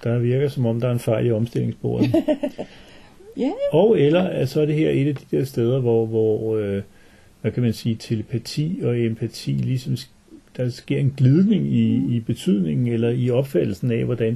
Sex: male